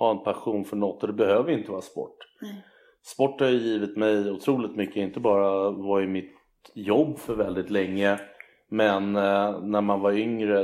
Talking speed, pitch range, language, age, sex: 180 wpm, 100-110 Hz, English, 30-49, male